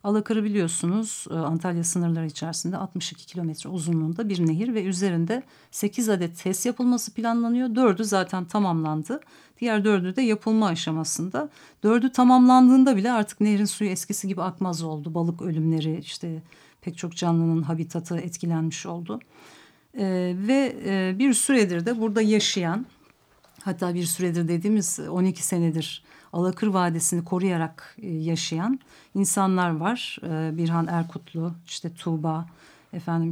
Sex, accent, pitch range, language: female, native, 170-215 Hz, Turkish